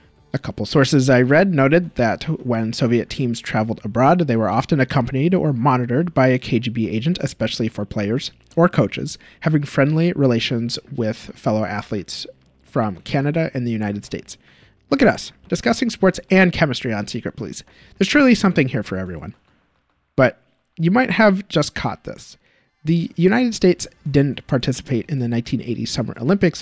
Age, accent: 30-49, American